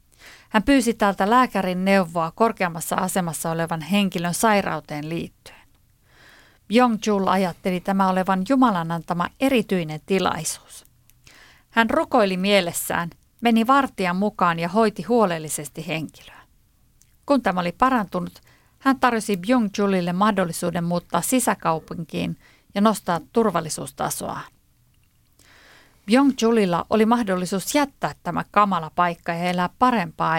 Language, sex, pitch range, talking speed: Finnish, female, 175-230 Hz, 105 wpm